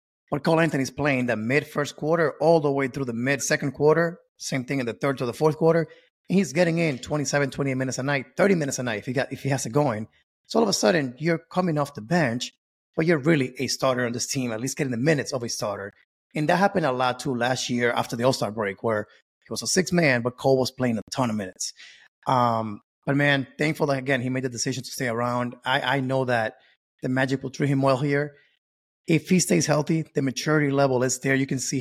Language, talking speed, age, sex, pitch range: English, 245 wpm, 30-49, male, 125-155 Hz